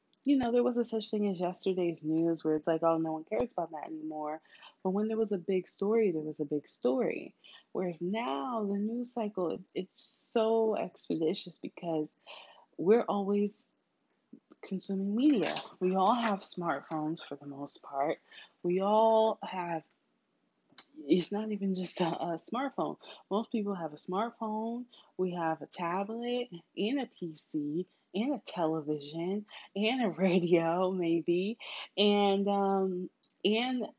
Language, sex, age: English, female, 20-39